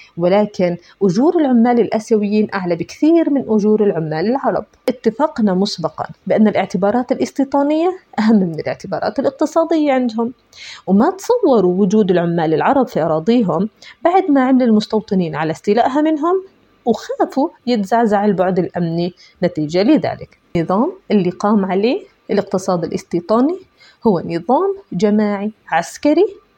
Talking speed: 115 wpm